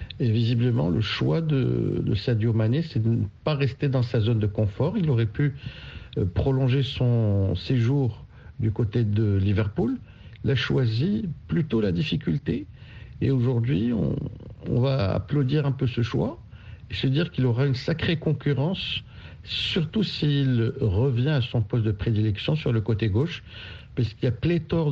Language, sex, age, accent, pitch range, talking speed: French, male, 60-79, French, 105-130 Hz, 165 wpm